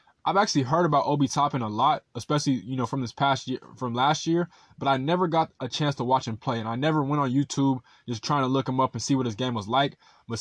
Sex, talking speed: male, 275 wpm